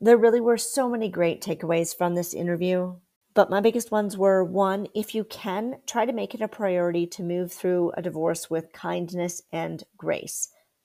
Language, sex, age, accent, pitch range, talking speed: English, female, 40-59, American, 175-215 Hz, 190 wpm